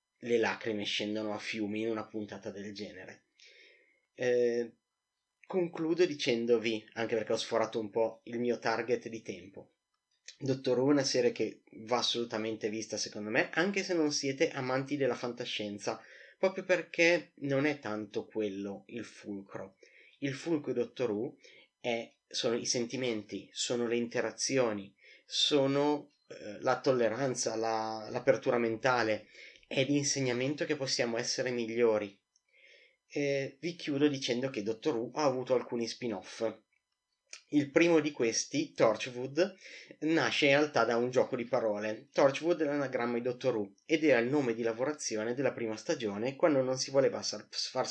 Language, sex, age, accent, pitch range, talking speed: Italian, male, 30-49, native, 110-145 Hz, 145 wpm